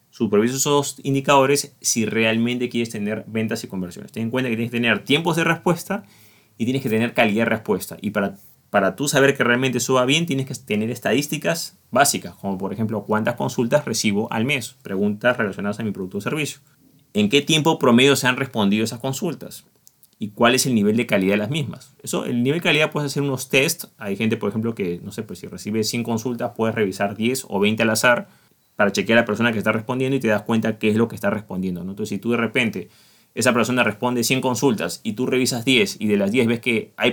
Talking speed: 230 wpm